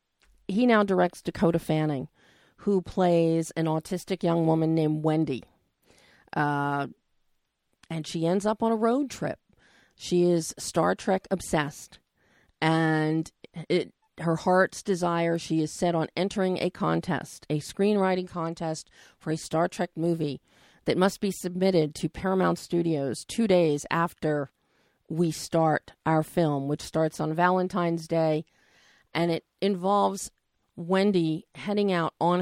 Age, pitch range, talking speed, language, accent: 40-59, 160-185 Hz, 135 wpm, English, American